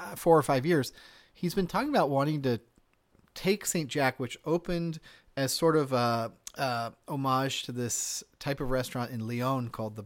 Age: 30-49